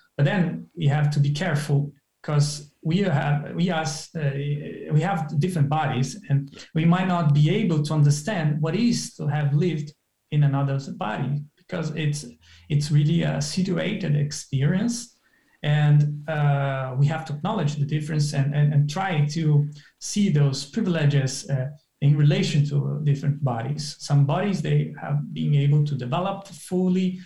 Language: English